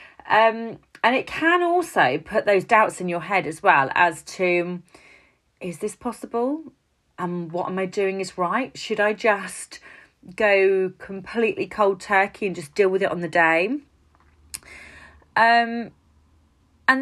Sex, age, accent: female, 30-49, British